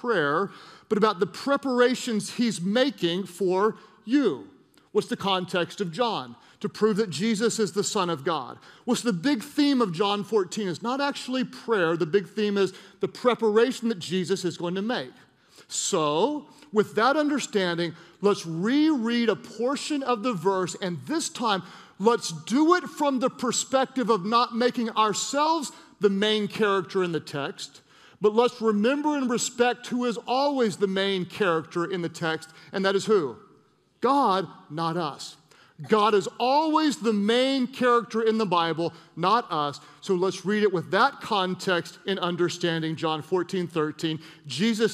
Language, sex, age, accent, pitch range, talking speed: English, male, 40-59, American, 180-240 Hz, 160 wpm